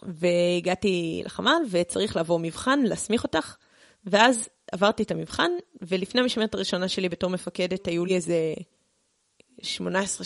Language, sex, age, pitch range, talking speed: Hebrew, female, 20-39, 180-220 Hz, 125 wpm